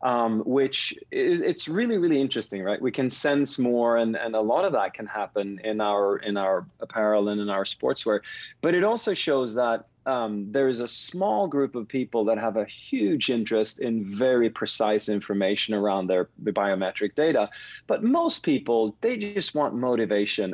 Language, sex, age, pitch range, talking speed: English, male, 40-59, 105-140 Hz, 180 wpm